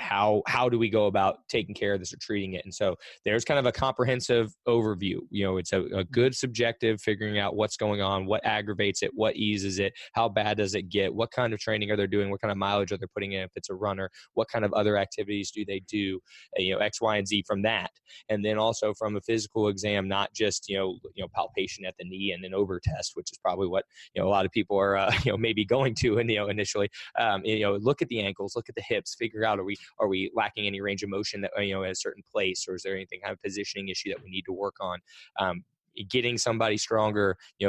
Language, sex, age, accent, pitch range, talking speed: English, male, 20-39, American, 95-110 Hz, 270 wpm